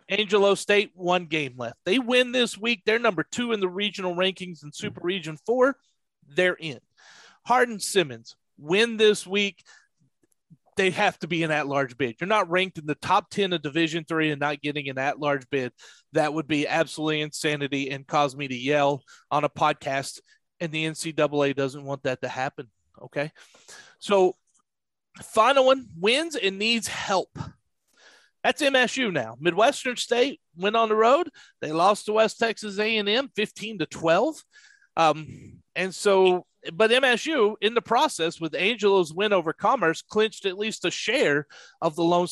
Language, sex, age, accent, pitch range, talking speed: English, male, 40-59, American, 150-215 Hz, 165 wpm